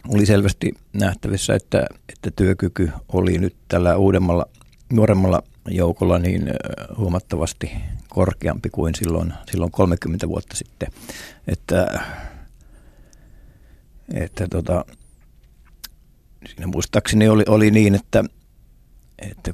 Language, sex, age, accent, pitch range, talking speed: Finnish, male, 50-69, native, 85-100 Hz, 95 wpm